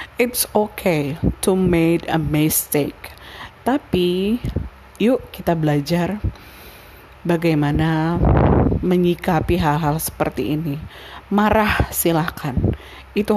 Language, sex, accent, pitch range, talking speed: Indonesian, female, native, 155-215 Hz, 80 wpm